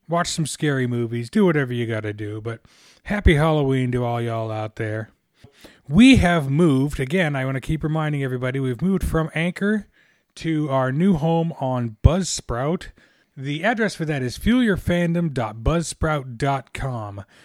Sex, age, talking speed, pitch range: male, 30-49, 150 wpm, 120-160 Hz